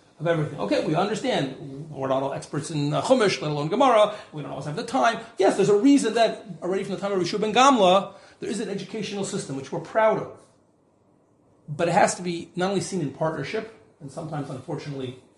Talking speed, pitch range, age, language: 220 wpm, 155-200 Hz, 30-49, English